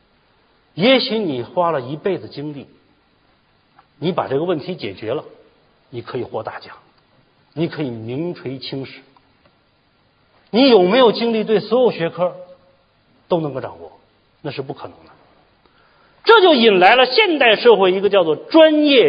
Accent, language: native, Chinese